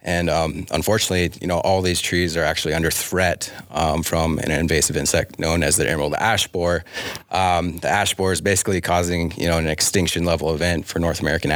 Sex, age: male, 30-49